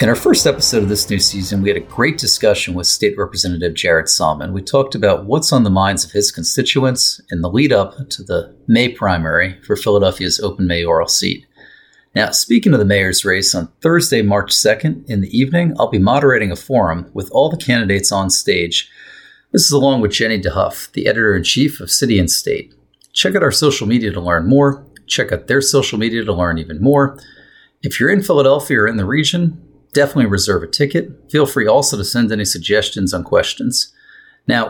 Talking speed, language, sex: 205 wpm, English, male